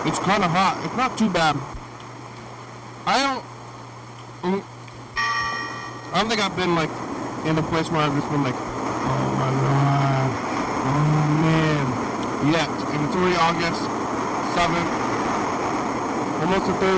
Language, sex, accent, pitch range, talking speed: English, male, American, 140-175 Hz, 135 wpm